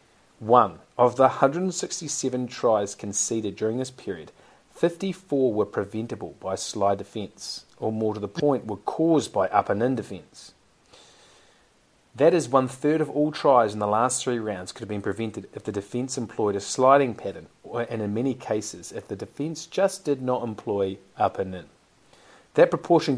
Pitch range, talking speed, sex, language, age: 100-135 Hz, 170 wpm, male, English, 30-49